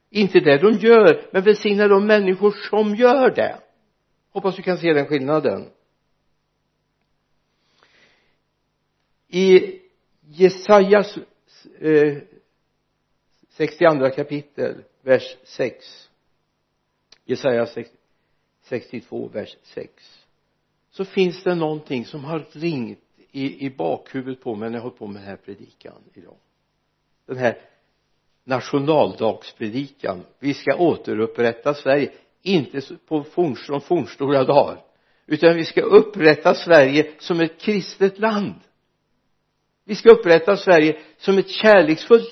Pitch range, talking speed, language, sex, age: 145-200 Hz, 110 wpm, Swedish, male, 60-79